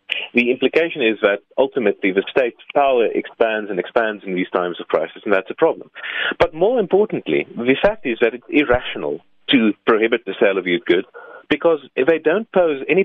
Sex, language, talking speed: male, English, 195 wpm